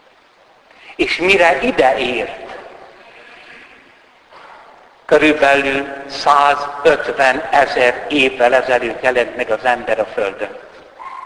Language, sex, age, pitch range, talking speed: Hungarian, male, 60-79, 135-210 Hz, 80 wpm